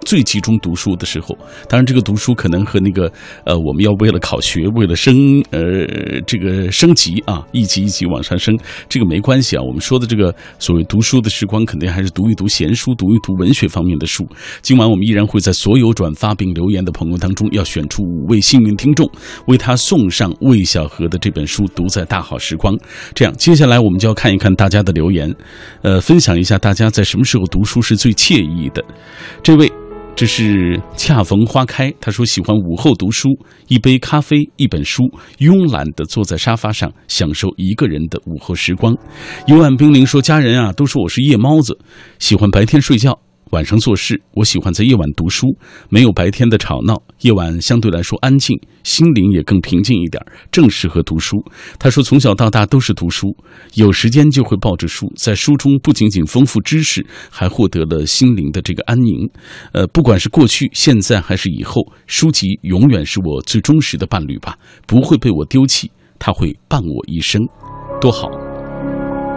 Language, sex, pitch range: Chinese, male, 90-130 Hz